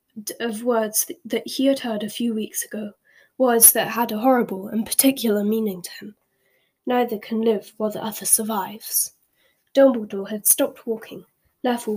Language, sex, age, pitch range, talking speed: English, female, 10-29, 215-265 Hz, 160 wpm